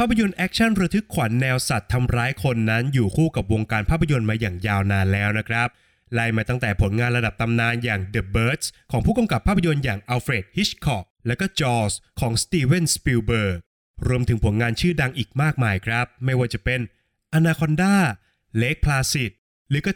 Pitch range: 110-150 Hz